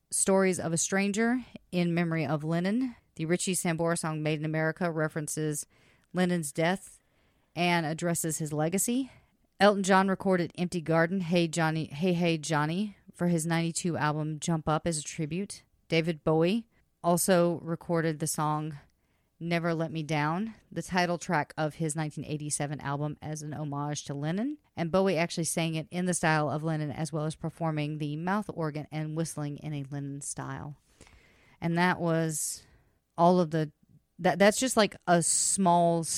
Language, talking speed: English, 165 wpm